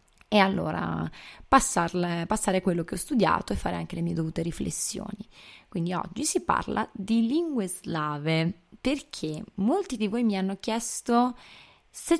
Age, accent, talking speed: 20-39, native, 150 wpm